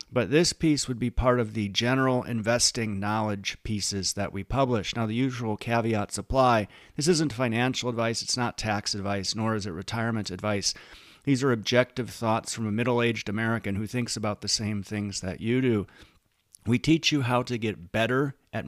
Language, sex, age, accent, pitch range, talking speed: English, male, 40-59, American, 100-120 Hz, 185 wpm